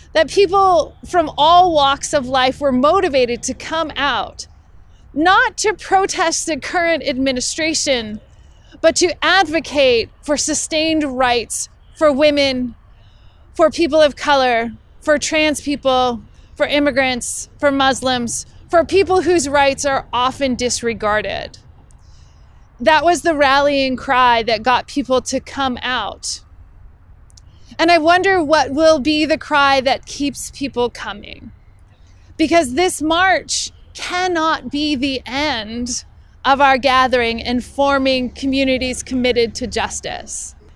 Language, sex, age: English, female, 30-49